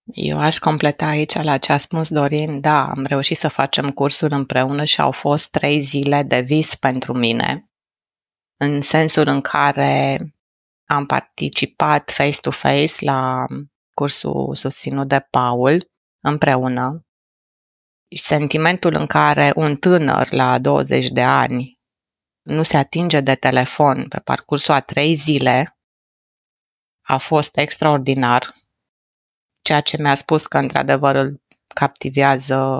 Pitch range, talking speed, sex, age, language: 130-155 Hz, 125 wpm, female, 30-49, Romanian